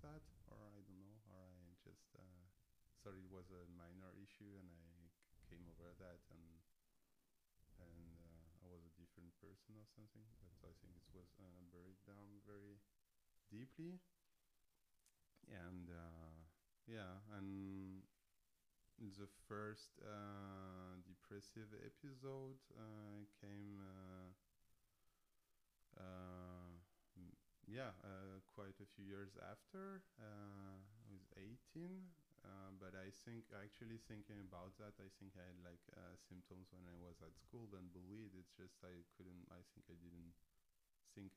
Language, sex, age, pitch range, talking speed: English, male, 30-49, 85-100 Hz, 140 wpm